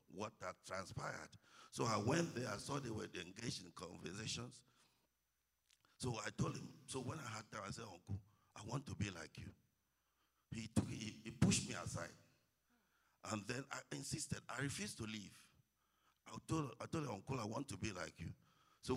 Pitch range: 105-140 Hz